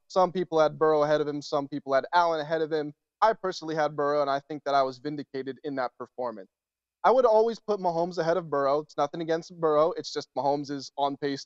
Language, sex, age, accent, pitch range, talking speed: English, male, 20-39, American, 150-200 Hz, 240 wpm